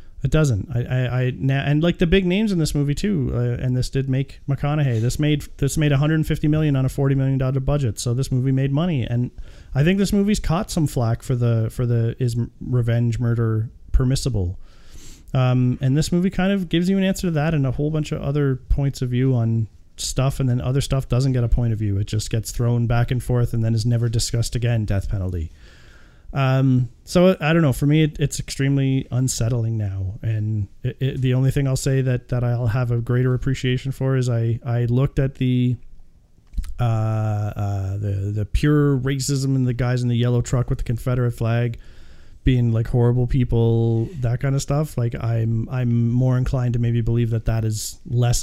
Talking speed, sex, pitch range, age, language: 210 wpm, male, 115-135 Hz, 30-49, English